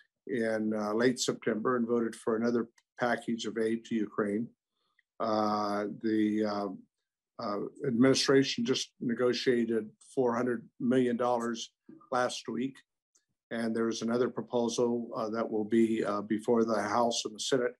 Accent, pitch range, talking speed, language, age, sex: American, 115-130 Hz, 130 wpm, English, 50-69, male